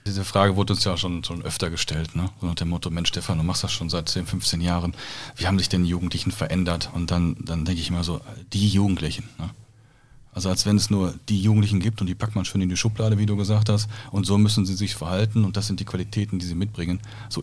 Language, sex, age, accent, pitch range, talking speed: German, male, 40-59, German, 90-110 Hz, 260 wpm